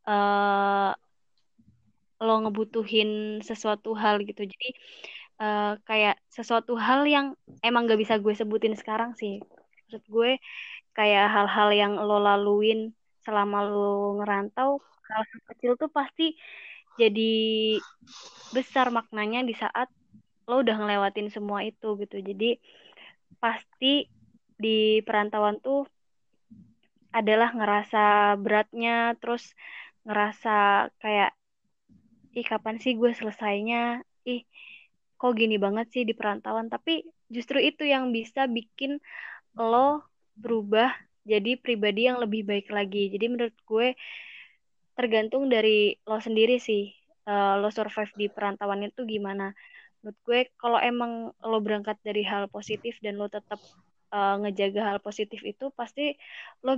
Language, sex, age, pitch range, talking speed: Indonesian, female, 20-39, 210-240 Hz, 120 wpm